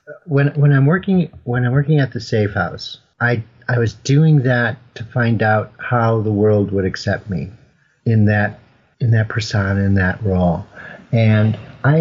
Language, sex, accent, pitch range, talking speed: English, male, American, 105-130 Hz, 175 wpm